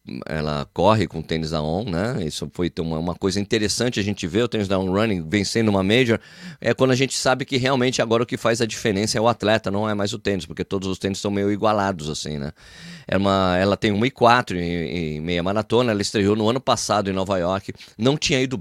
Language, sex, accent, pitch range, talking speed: Portuguese, male, Brazilian, 90-125 Hz, 245 wpm